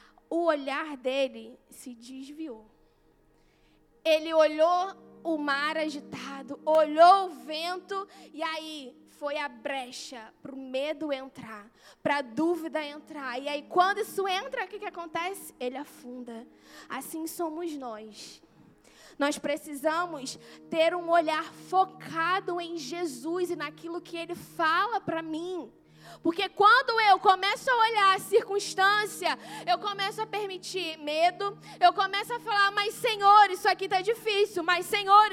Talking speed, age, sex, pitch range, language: 135 wpm, 10-29, female, 290-405 Hz, Portuguese